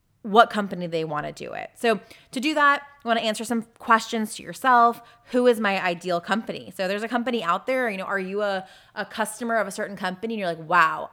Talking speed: 245 wpm